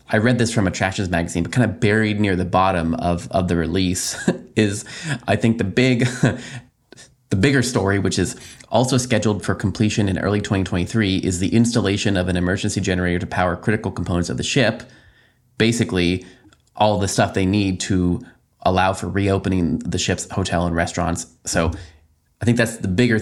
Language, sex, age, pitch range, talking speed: English, male, 20-39, 90-115 Hz, 185 wpm